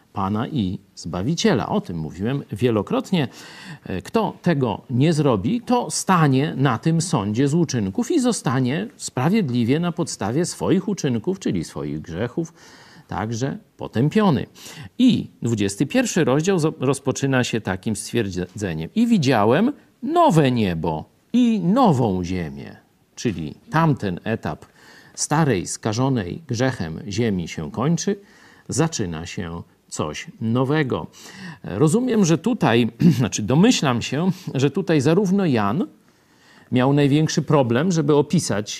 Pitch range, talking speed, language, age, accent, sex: 120-175 Hz, 110 wpm, Polish, 50-69, native, male